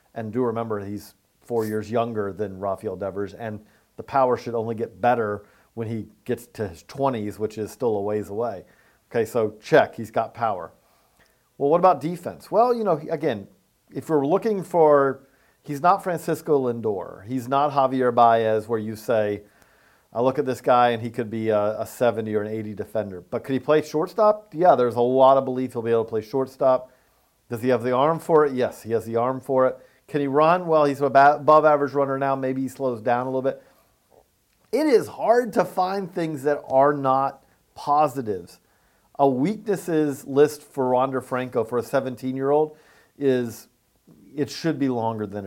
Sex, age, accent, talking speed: male, 40-59, American, 195 wpm